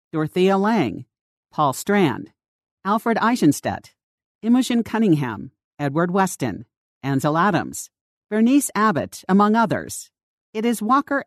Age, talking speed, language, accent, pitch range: 50-69, 100 wpm, English, American, 145-205 Hz